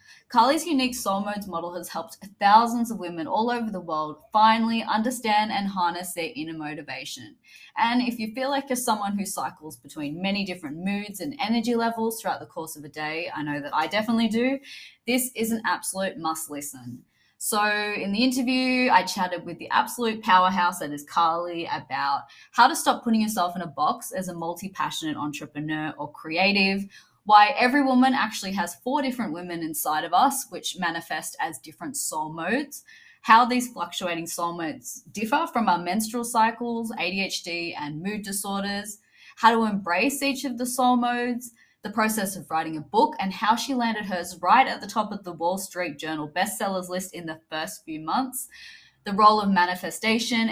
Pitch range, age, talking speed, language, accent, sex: 170-235 Hz, 20-39, 180 wpm, English, Australian, female